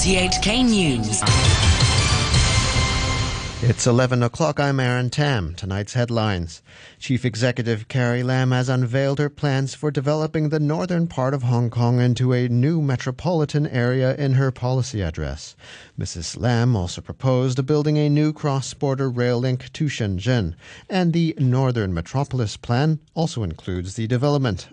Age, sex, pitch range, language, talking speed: 40-59, male, 115-140 Hz, English, 130 wpm